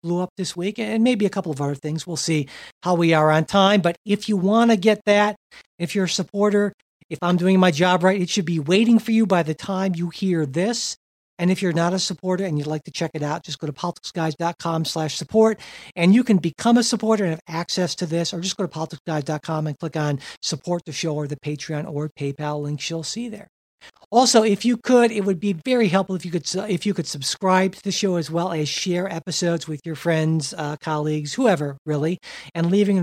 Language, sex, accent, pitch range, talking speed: English, male, American, 150-190 Hz, 235 wpm